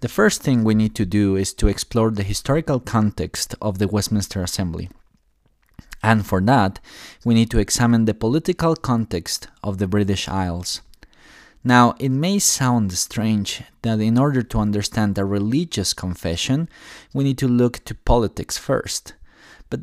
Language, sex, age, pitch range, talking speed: English, male, 20-39, 100-120 Hz, 155 wpm